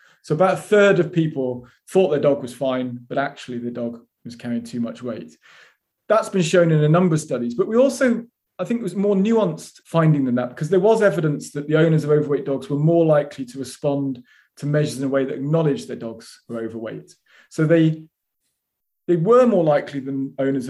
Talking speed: 215 wpm